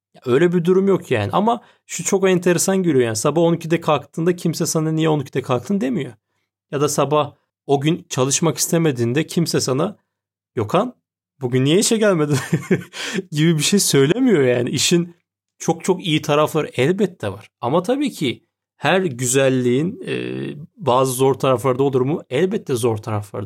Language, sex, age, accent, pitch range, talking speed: Turkish, male, 30-49, native, 125-170 Hz, 155 wpm